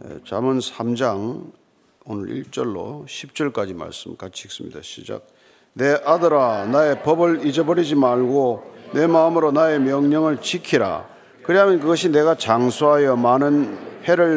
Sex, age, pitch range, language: male, 40-59, 145-180 Hz, Korean